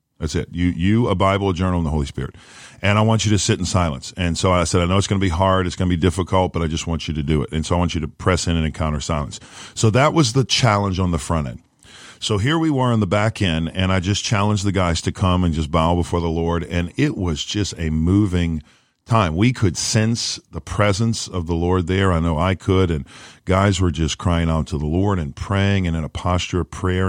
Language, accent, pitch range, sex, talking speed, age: English, American, 80-105 Hz, male, 270 wpm, 40-59